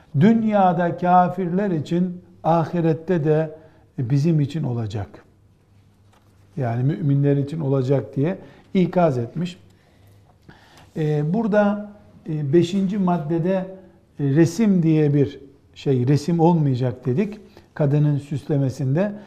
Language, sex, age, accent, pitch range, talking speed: Turkish, male, 60-79, native, 140-185 Hz, 85 wpm